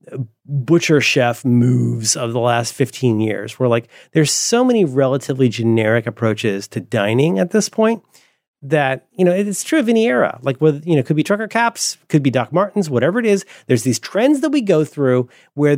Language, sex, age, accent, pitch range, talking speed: English, male, 30-49, American, 125-200 Hz, 200 wpm